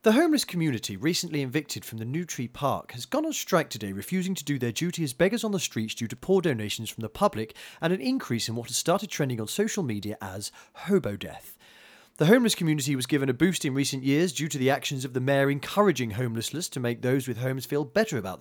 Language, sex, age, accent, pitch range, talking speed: English, male, 30-49, British, 140-210 Hz, 240 wpm